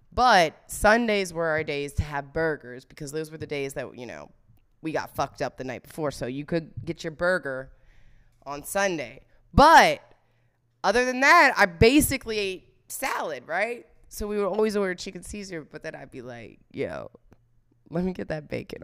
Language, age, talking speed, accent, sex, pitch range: English, 20-39, 185 wpm, American, female, 135-215 Hz